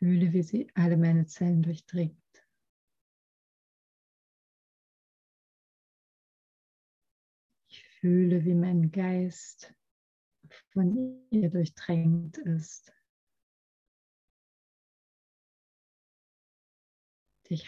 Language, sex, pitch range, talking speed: German, female, 160-180 Hz, 60 wpm